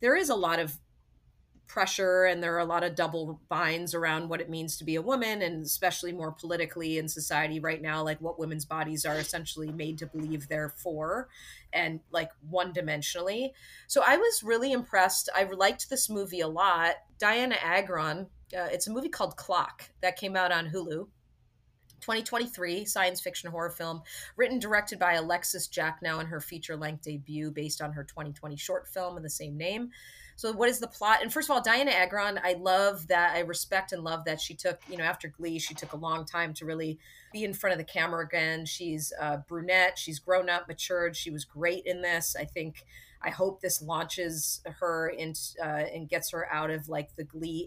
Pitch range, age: 155-185 Hz, 30-49